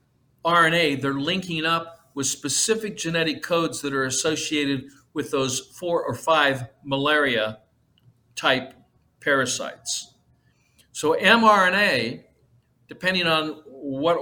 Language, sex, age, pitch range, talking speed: English, male, 60-79, 130-180 Hz, 100 wpm